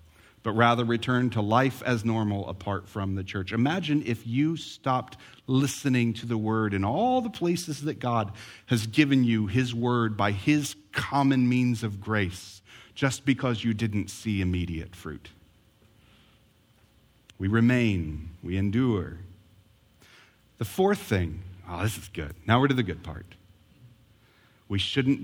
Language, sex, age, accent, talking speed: English, male, 40-59, American, 145 wpm